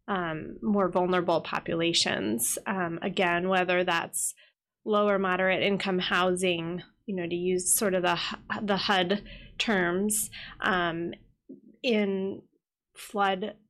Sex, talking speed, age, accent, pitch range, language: female, 110 wpm, 20-39, American, 180-200 Hz, English